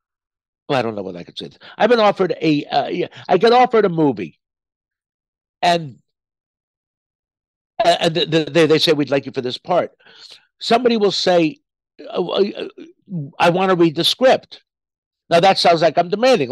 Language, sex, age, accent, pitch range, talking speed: English, male, 60-79, American, 155-210 Hz, 165 wpm